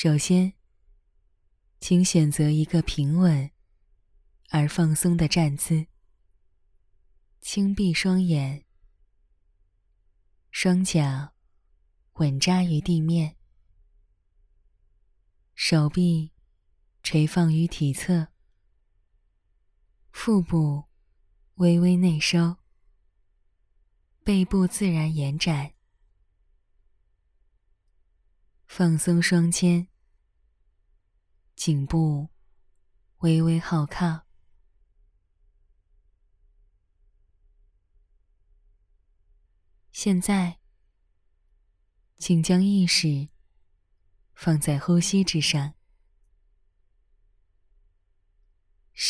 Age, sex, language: 20-39, female, Chinese